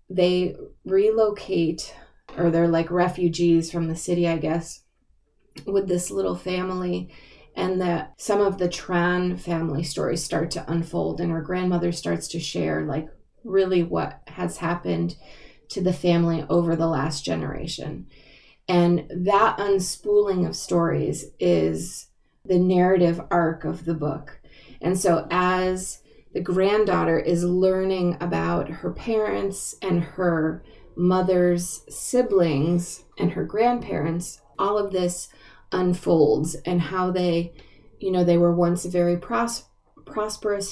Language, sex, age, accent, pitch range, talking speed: English, female, 20-39, American, 165-185 Hz, 130 wpm